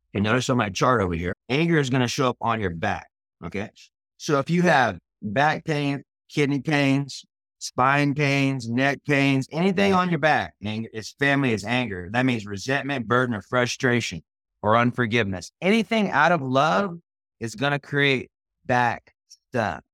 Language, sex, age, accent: English, male, 30-49, American